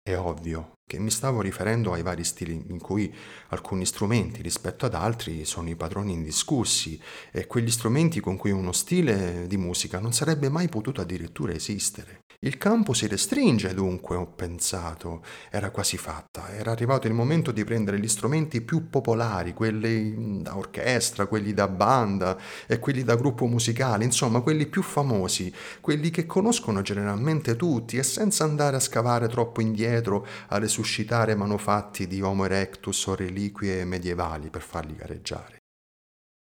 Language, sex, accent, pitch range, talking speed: Italian, male, native, 90-125 Hz, 155 wpm